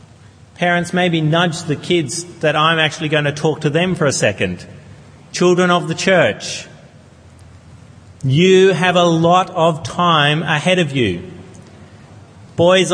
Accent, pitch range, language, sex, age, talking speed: Australian, 145-195 Hz, English, male, 40-59, 140 wpm